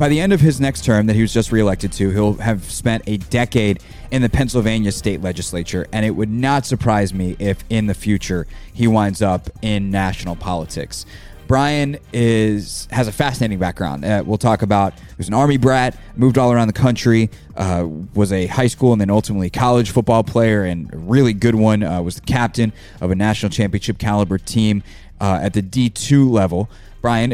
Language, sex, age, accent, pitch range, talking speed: English, male, 20-39, American, 100-120 Hz, 200 wpm